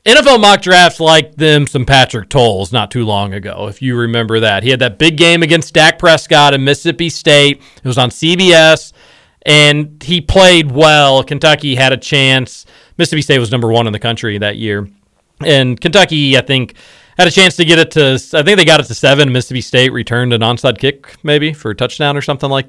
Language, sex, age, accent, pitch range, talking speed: English, male, 40-59, American, 120-160 Hz, 210 wpm